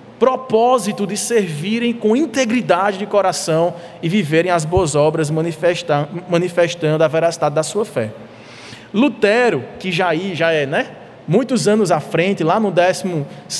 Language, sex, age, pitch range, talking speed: Portuguese, male, 20-39, 180-235 Hz, 140 wpm